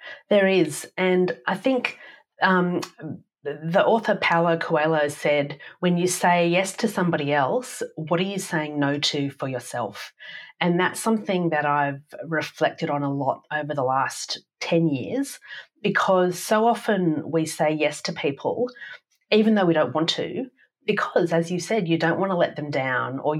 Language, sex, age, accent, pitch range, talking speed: English, female, 30-49, Australian, 150-190 Hz, 170 wpm